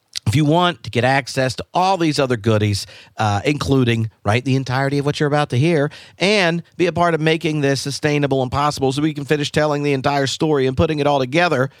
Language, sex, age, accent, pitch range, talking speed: English, male, 50-69, American, 120-180 Hz, 230 wpm